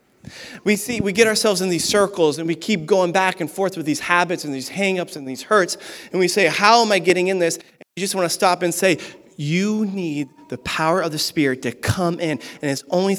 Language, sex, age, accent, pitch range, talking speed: English, male, 30-49, American, 150-200 Hz, 240 wpm